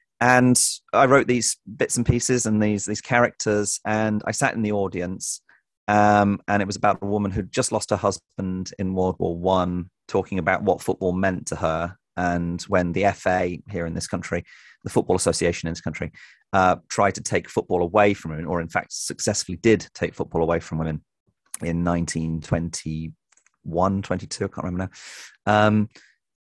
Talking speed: 170 wpm